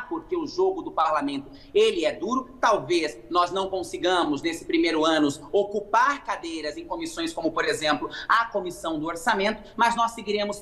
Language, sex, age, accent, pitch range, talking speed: English, male, 30-49, Brazilian, 185-240 Hz, 160 wpm